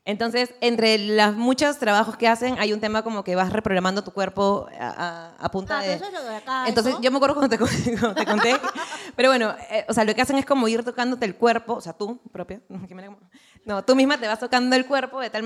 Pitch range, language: 200-260 Hz, Spanish